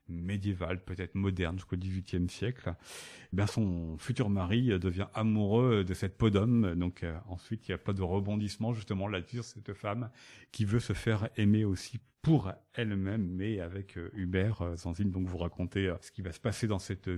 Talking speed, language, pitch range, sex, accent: 190 wpm, French, 95-115 Hz, male, French